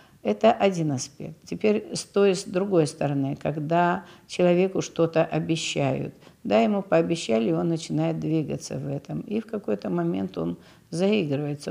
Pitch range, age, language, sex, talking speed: 150-180 Hz, 50-69, Russian, female, 145 wpm